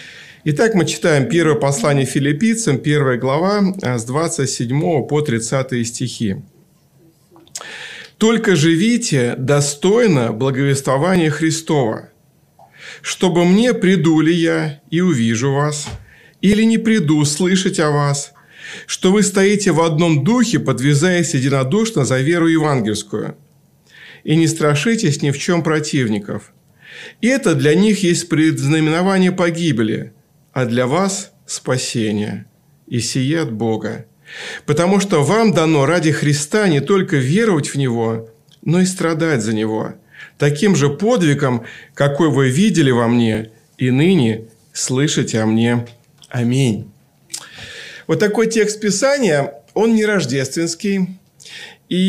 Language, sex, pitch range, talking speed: Russian, male, 135-185 Hz, 115 wpm